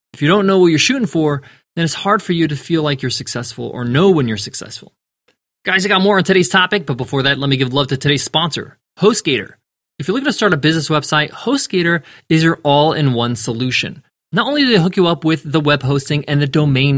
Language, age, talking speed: English, 20-39, 240 wpm